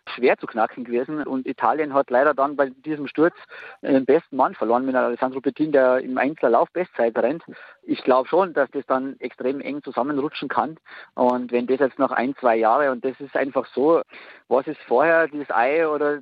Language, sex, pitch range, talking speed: German, male, 125-160 Hz, 195 wpm